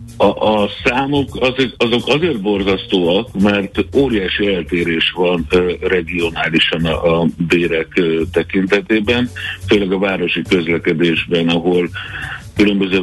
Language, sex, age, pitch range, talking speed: Hungarian, male, 60-79, 85-100 Hz, 90 wpm